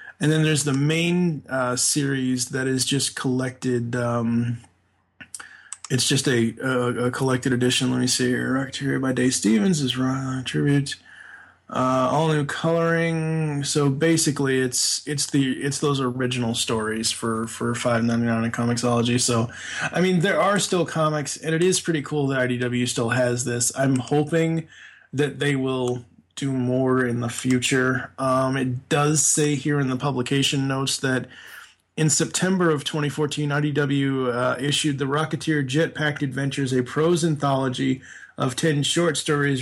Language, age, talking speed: English, 20-39, 160 wpm